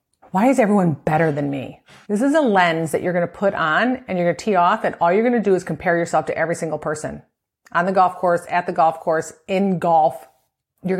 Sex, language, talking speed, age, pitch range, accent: female, English, 250 wpm, 30-49, 170-215 Hz, American